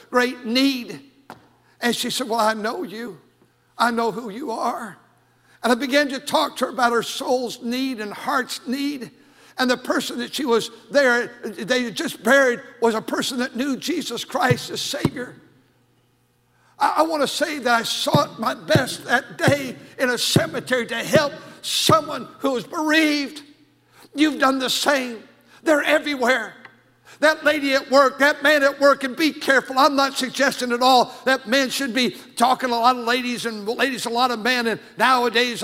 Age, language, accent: 60-79, English, American